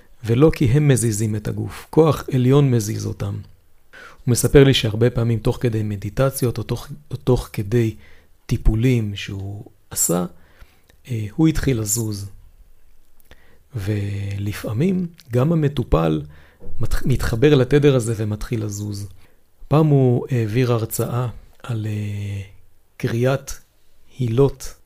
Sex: male